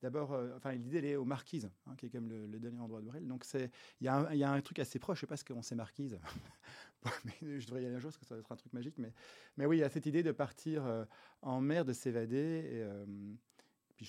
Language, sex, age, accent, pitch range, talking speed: French, male, 30-49, French, 115-140 Hz, 290 wpm